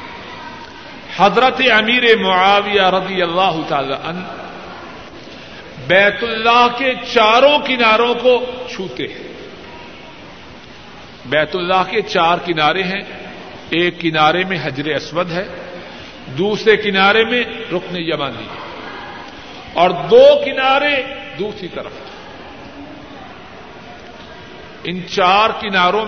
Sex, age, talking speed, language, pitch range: male, 50-69, 90 wpm, Urdu, 175-235 Hz